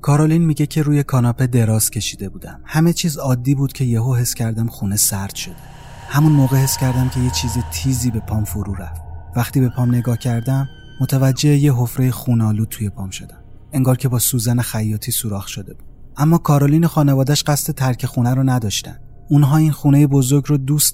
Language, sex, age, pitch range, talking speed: Persian, male, 30-49, 110-135 Hz, 190 wpm